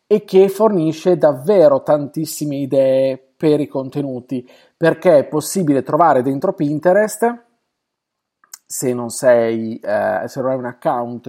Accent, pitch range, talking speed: native, 130-190 Hz, 130 wpm